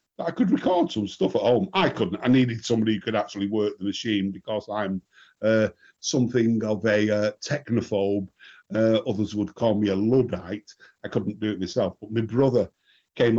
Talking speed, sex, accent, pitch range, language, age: 190 wpm, male, British, 105-130 Hz, English, 50-69